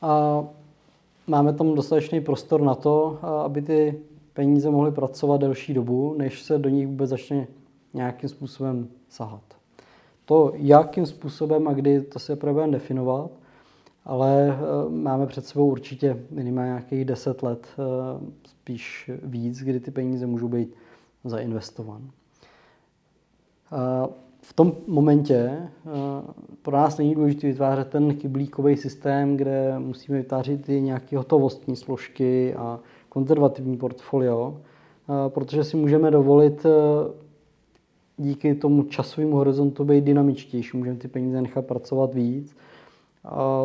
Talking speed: 120 wpm